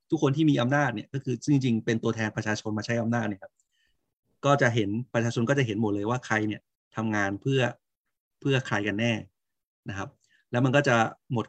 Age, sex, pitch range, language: 20-39, male, 105-130 Hz, Thai